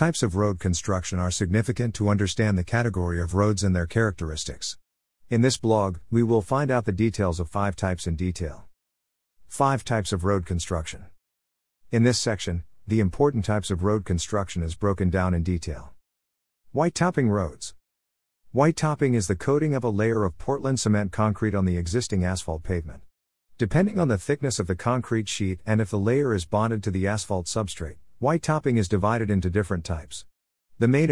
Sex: male